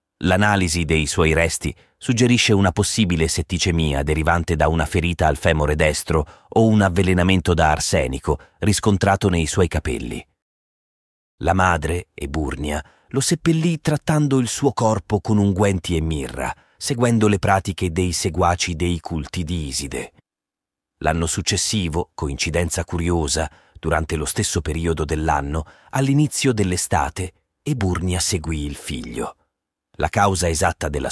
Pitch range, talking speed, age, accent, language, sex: 80-100 Hz, 125 wpm, 40-59, native, Italian, male